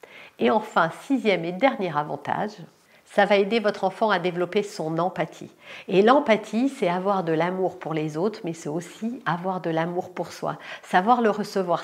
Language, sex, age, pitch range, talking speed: French, female, 50-69, 180-235 Hz, 175 wpm